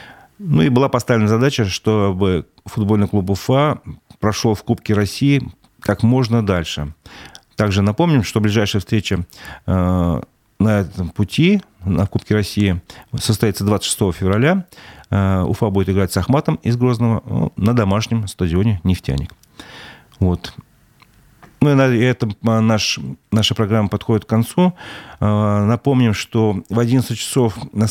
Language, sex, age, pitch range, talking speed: Russian, male, 40-59, 95-115 Hz, 115 wpm